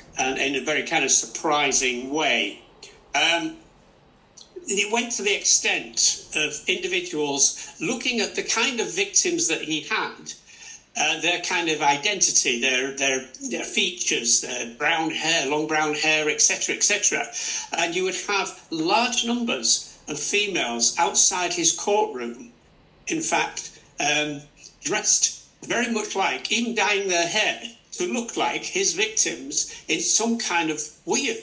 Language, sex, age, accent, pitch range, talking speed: English, male, 60-79, British, 140-230 Hz, 140 wpm